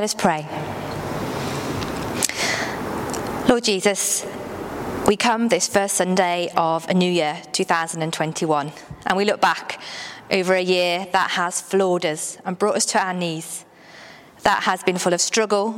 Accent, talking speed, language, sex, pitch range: British, 145 wpm, English, female, 170-205 Hz